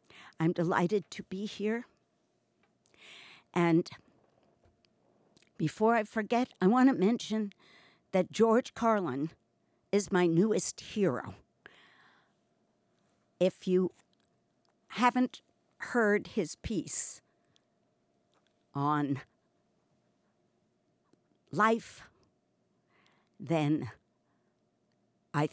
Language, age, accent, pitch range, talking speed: English, 60-79, American, 155-205 Hz, 70 wpm